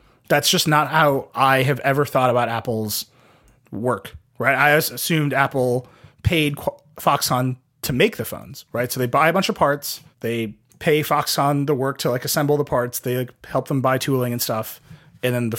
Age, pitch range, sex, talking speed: 30-49, 120-150 Hz, male, 190 wpm